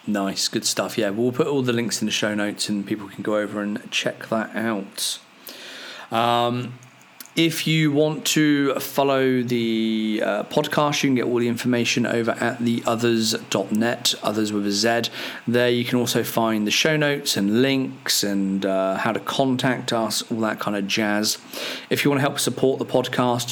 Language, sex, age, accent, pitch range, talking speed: English, male, 40-59, British, 110-135 Hz, 190 wpm